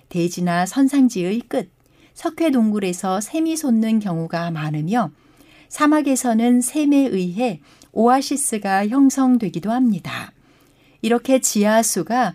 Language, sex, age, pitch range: Korean, female, 60-79, 175-260 Hz